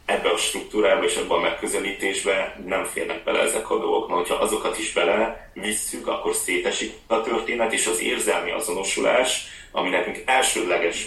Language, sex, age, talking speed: Hungarian, male, 30-49, 155 wpm